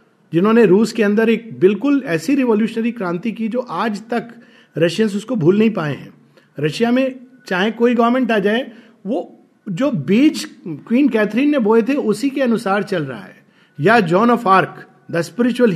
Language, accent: Hindi, native